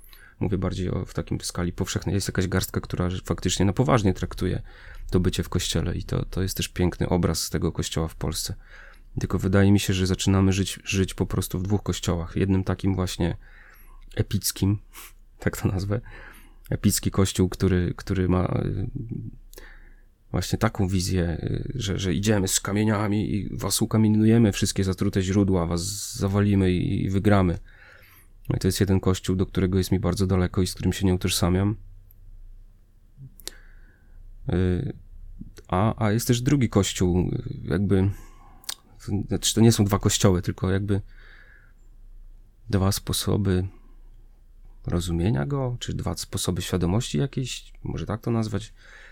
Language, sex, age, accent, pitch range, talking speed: Polish, male, 30-49, native, 95-105 Hz, 145 wpm